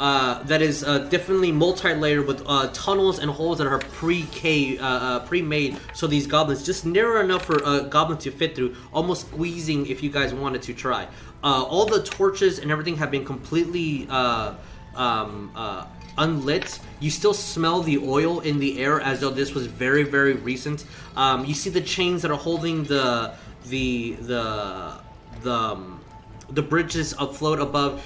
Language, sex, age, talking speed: English, male, 20-39, 175 wpm